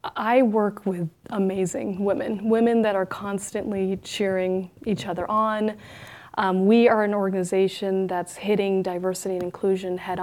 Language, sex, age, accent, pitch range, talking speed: English, female, 30-49, American, 185-215 Hz, 140 wpm